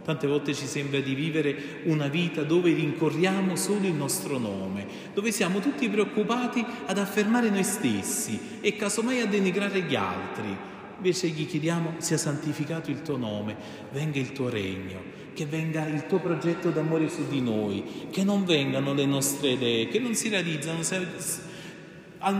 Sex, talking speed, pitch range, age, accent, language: male, 160 wpm, 135-175 Hz, 40-59, native, Italian